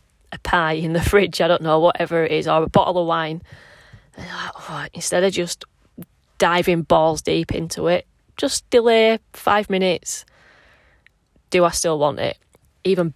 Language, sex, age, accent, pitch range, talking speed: English, female, 20-39, British, 155-180 Hz, 155 wpm